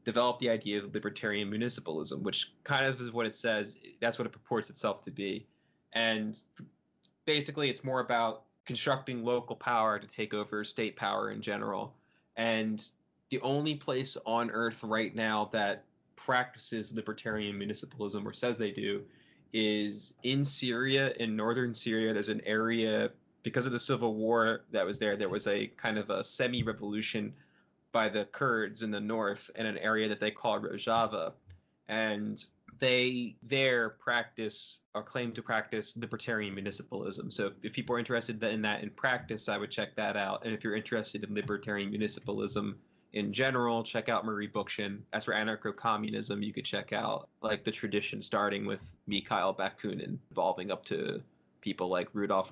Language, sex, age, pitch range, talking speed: English, male, 20-39, 105-120 Hz, 165 wpm